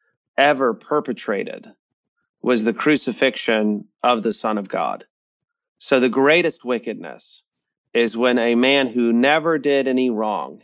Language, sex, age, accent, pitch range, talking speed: English, male, 30-49, American, 115-140 Hz, 130 wpm